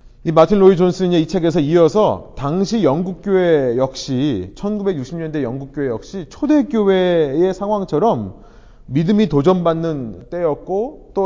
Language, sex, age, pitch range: Korean, male, 30-49, 135-195 Hz